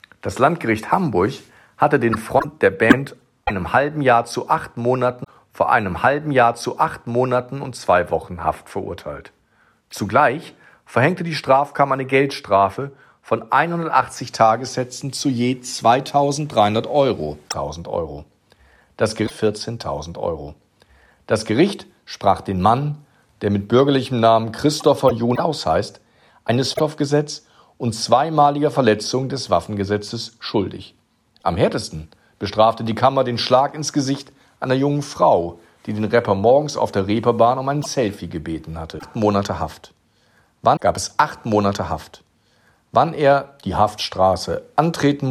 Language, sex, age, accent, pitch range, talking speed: German, male, 50-69, German, 100-135 Hz, 135 wpm